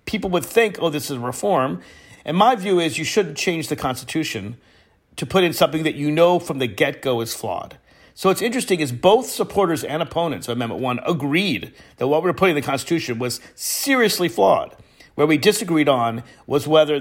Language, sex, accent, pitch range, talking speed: English, male, American, 120-165 Hz, 205 wpm